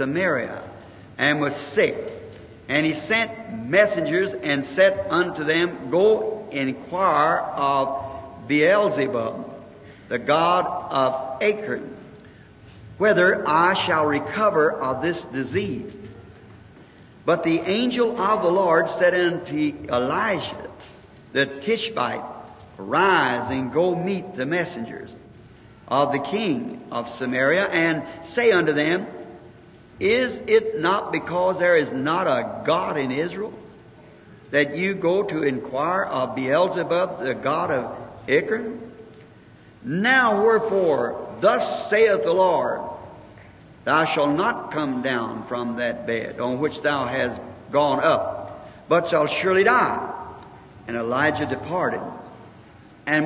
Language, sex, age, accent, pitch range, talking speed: English, male, 60-79, American, 135-210 Hz, 115 wpm